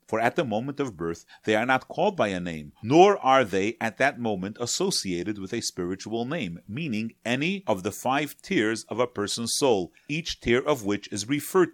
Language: English